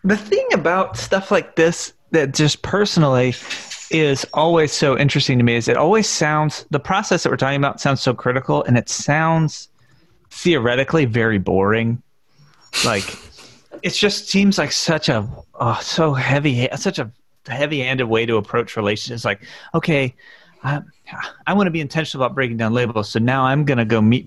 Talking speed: 175 wpm